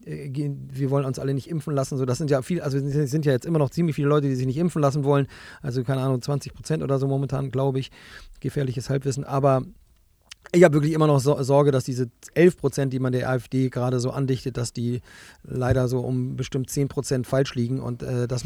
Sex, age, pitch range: male, 30-49, 130-145 Hz